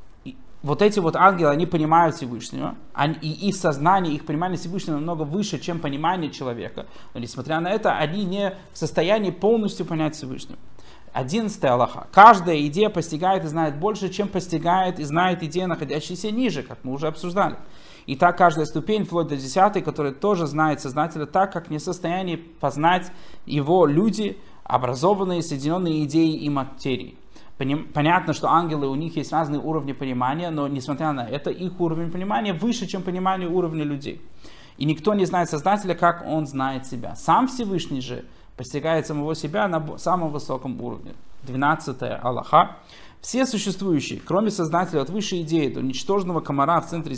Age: 30-49